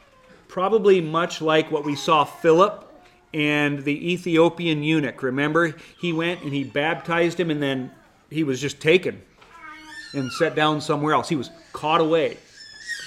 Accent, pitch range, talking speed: American, 150-190 Hz, 150 wpm